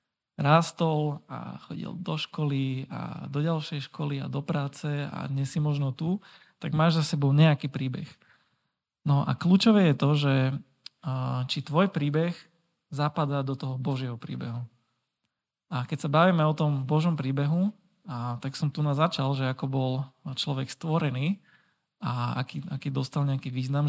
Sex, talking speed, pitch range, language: male, 150 wpm, 135-160 Hz, Slovak